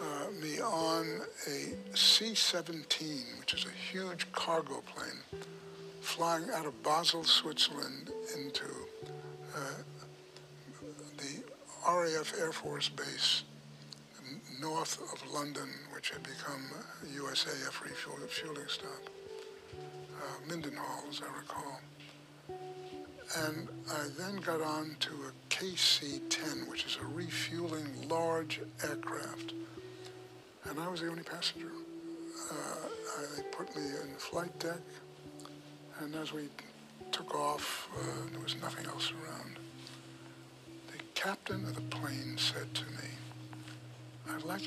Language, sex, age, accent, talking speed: English, male, 60-79, American, 115 wpm